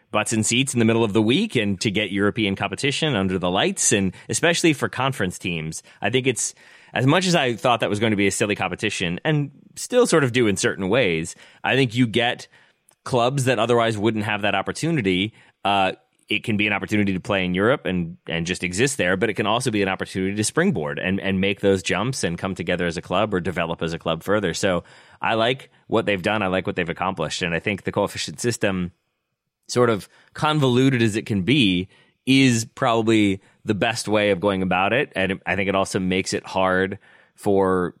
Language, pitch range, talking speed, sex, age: English, 95-115 Hz, 220 wpm, male, 30-49